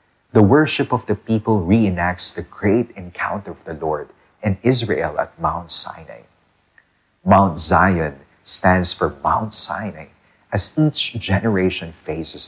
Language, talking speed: English, 130 wpm